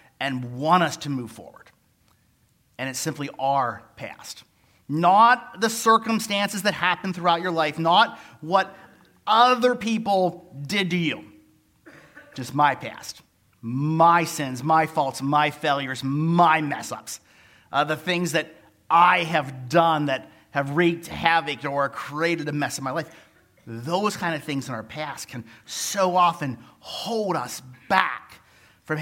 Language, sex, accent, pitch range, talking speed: English, male, American, 140-180 Hz, 145 wpm